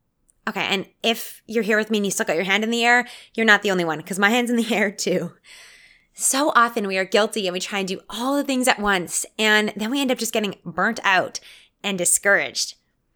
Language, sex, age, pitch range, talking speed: English, female, 20-39, 185-235 Hz, 245 wpm